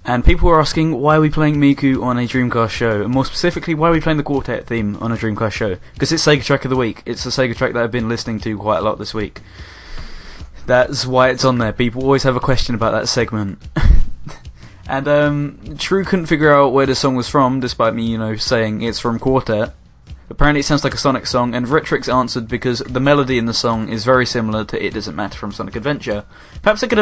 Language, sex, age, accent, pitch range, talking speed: English, male, 10-29, British, 110-135 Hz, 240 wpm